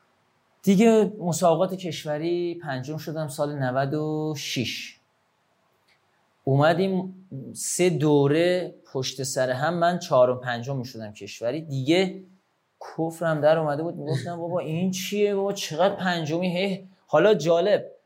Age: 30-49